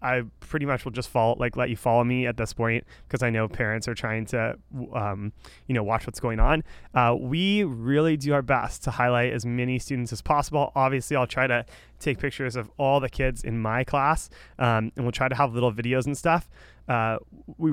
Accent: American